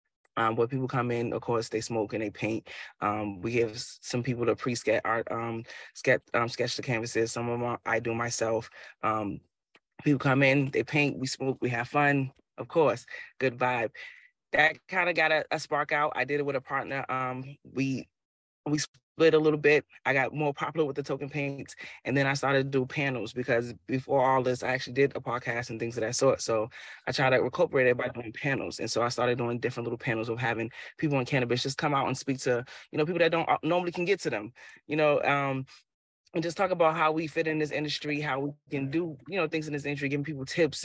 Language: English